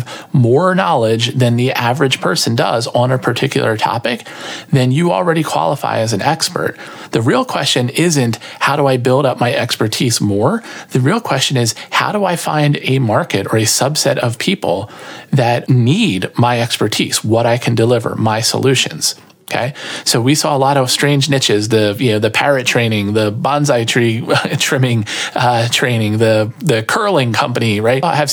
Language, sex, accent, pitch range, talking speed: English, male, American, 115-145 Hz, 175 wpm